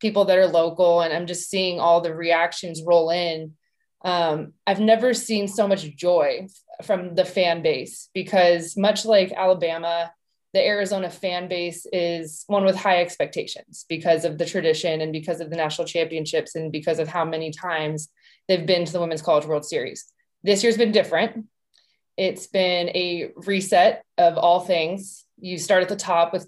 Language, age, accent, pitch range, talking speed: English, 20-39, American, 165-195 Hz, 180 wpm